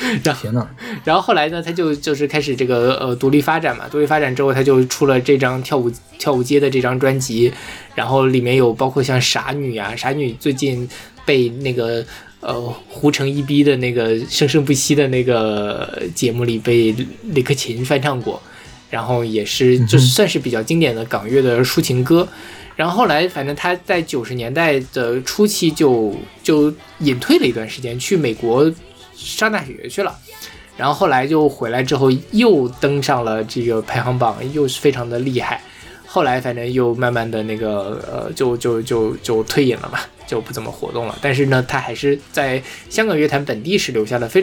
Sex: male